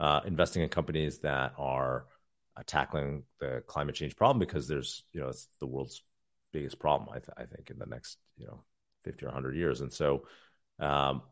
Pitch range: 70-85 Hz